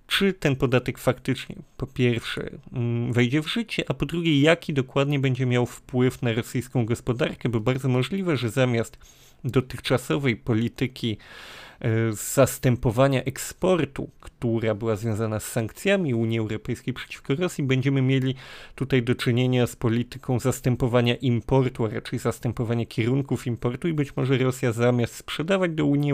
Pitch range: 120-150 Hz